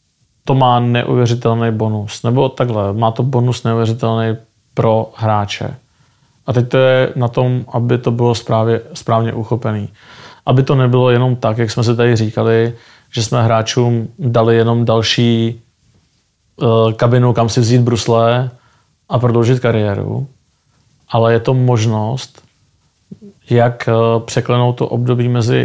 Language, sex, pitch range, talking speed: Czech, male, 115-125 Hz, 140 wpm